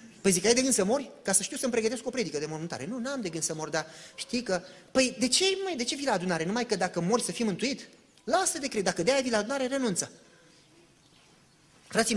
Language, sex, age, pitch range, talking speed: Romanian, male, 30-49, 185-260 Hz, 255 wpm